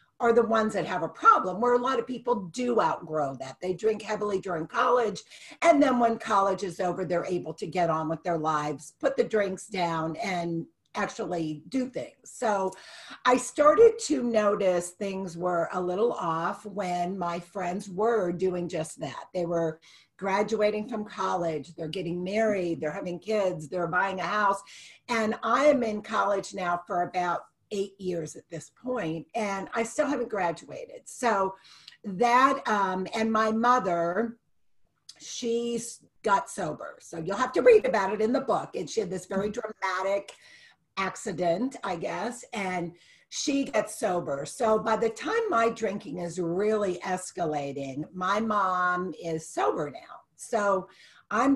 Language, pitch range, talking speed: English, 170-220 Hz, 165 wpm